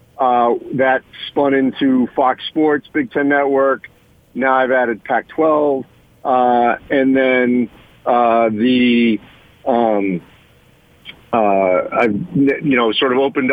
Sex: male